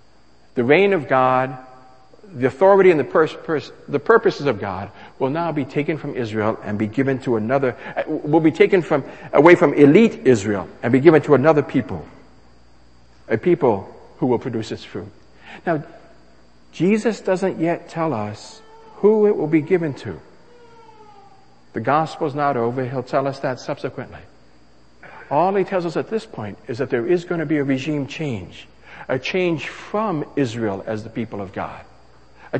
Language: English